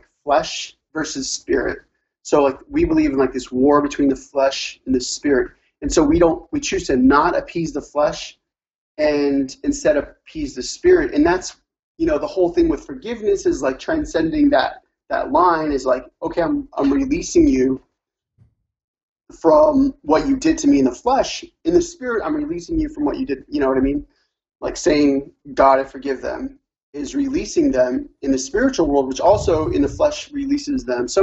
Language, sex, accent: English, male, American